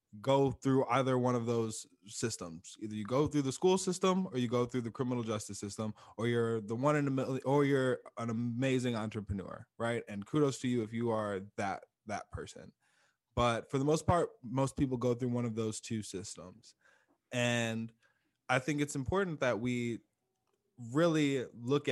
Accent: American